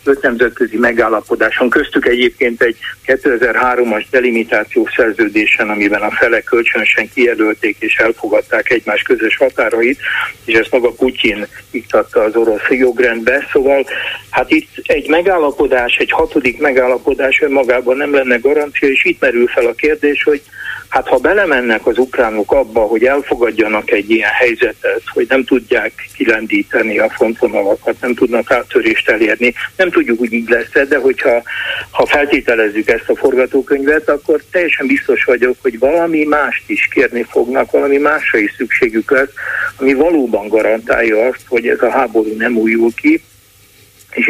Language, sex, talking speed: Hungarian, male, 140 wpm